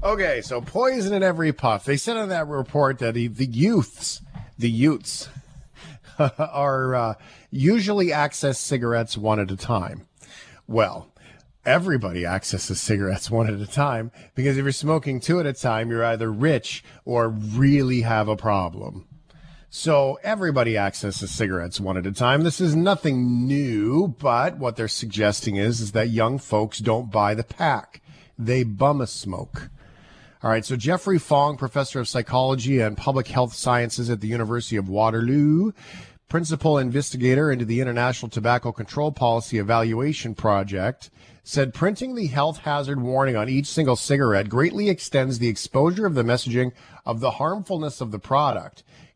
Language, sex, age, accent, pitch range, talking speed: English, male, 50-69, American, 115-145 Hz, 155 wpm